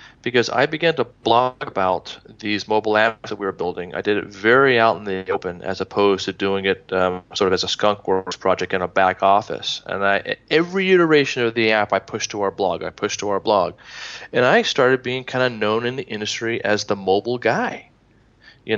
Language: English